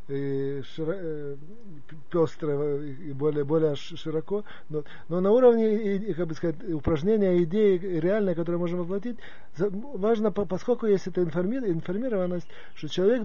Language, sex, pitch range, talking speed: Russian, male, 150-200 Hz, 130 wpm